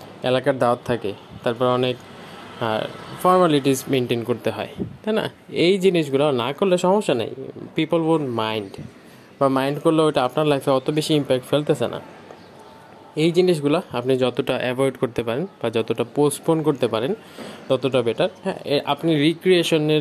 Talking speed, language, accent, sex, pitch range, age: 80 wpm, Bengali, native, male, 125-160 Hz, 20-39